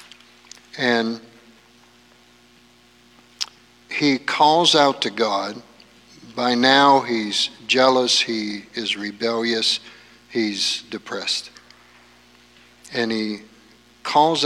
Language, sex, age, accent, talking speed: English, male, 50-69, American, 75 wpm